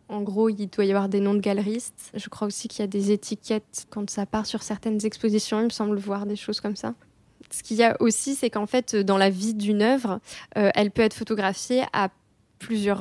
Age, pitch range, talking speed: 20-39, 200-225 Hz, 240 wpm